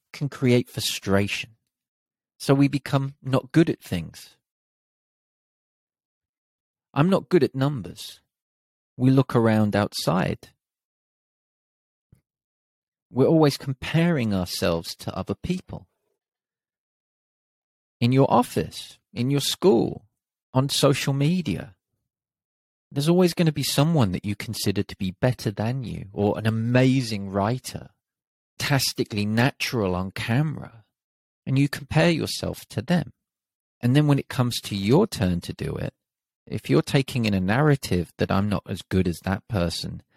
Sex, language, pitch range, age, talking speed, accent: male, English, 100-140 Hz, 30-49, 130 wpm, British